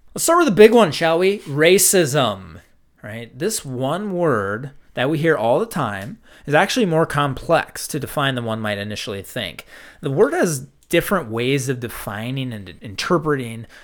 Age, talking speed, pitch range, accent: 30-49, 175 wpm, 110-160 Hz, American